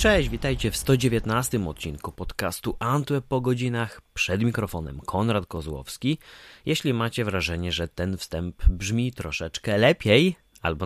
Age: 30-49